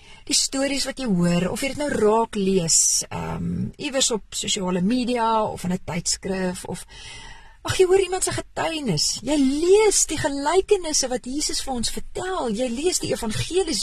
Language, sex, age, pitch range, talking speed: English, female, 40-59, 180-260 Hz, 180 wpm